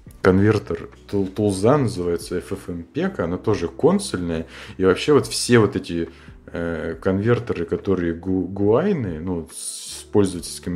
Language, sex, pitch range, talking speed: Russian, male, 80-100 Hz, 105 wpm